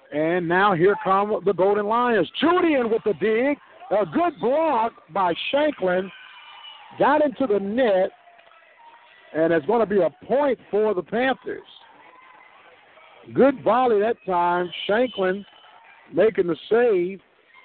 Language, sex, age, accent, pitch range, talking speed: English, male, 50-69, American, 175-245 Hz, 130 wpm